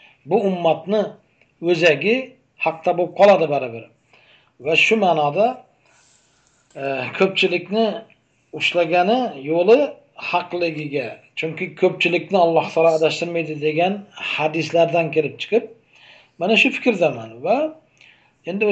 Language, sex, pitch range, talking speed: Russian, male, 135-185 Hz, 100 wpm